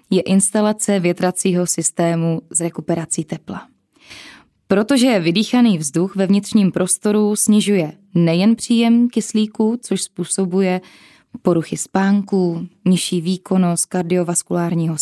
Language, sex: Czech, female